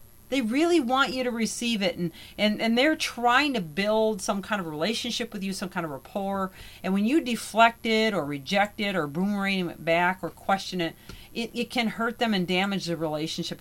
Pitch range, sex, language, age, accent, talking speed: 185-260 Hz, female, English, 40-59, American, 210 wpm